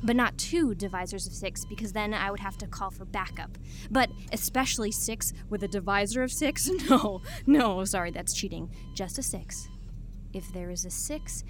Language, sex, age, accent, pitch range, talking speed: English, female, 20-39, American, 195-255 Hz, 190 wpm